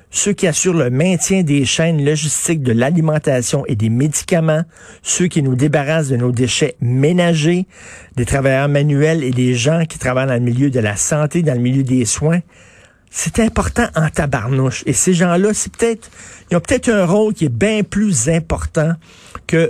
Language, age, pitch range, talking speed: French, 50-69, 130-165 Hz, 185 wpm